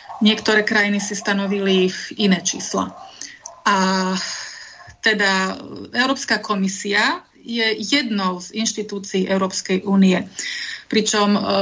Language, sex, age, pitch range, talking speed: Slovak, female, 30-49, 200-225 Hz, 95 wpm